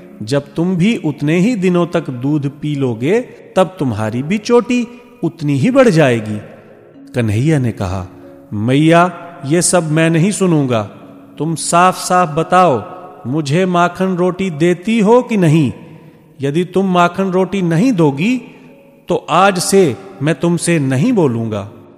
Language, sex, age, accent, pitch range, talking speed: Hindi, male, 40-59, native, 120-175 Hz, 140 wpm